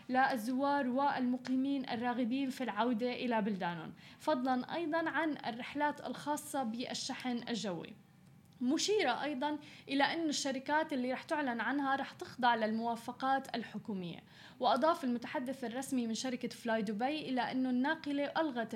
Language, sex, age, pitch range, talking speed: Arabic, female, 10-29, 240-285 Hz, 120 wpm